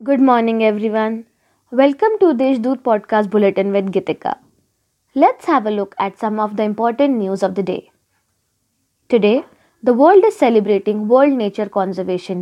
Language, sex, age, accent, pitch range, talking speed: Marathi, female, 20-39, native, 200-260 Hz, 150 wpm